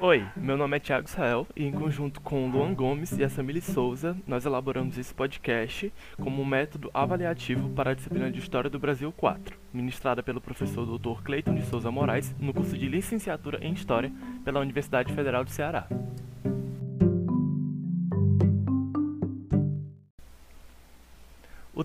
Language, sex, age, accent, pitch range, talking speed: Portuguese, male, 20-39, Brazilian, 130-170 Hz, 145 wpm